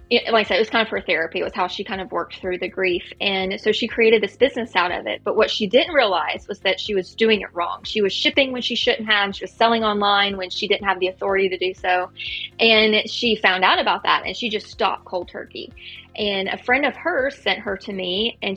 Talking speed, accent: 265 wpm, American